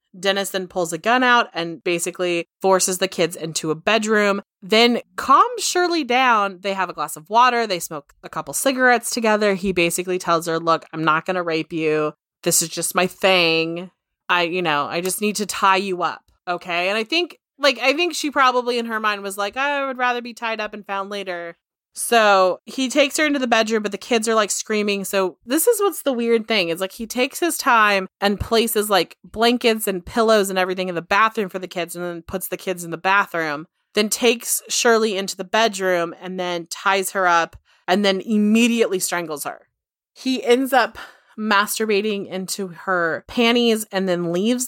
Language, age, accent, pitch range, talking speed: English, 30-49, American, 180-230 Hz, 205 wpm